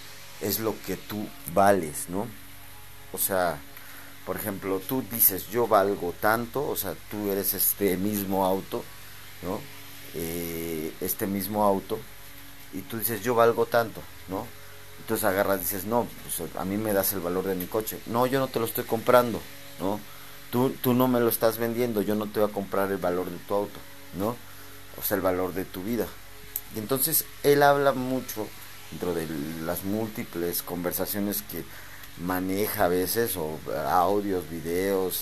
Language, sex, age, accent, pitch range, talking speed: Spanish, male, 40-59, Mexican, 95-110 Hz, 170 wpm